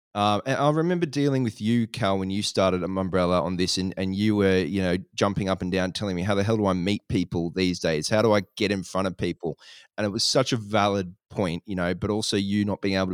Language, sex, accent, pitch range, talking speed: English, male, Australian, 95-120 Hz, 270 wpm